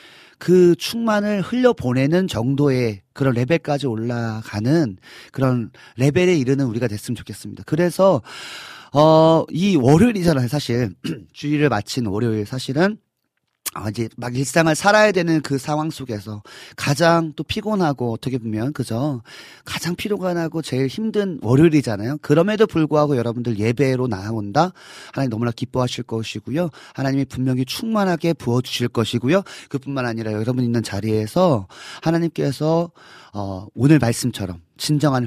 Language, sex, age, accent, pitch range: Korean, male, 40-59, native, 115-170 Hz